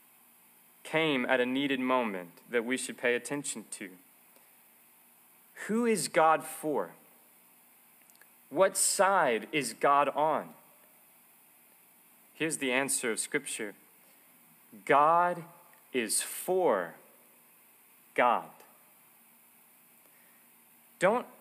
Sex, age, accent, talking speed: male, 30-49, American, 85 wpm